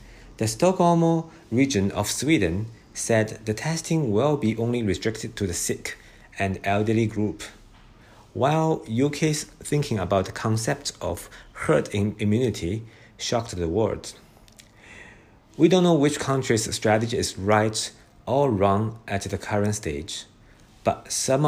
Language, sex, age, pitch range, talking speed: English, male, 50-69, 105-130 Hz, 130 wpm